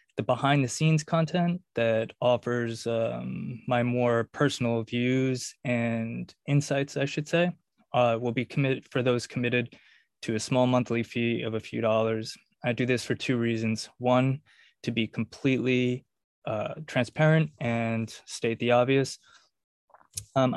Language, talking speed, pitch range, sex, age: English, 145 wpm, 115-130 Hz, male, 20-39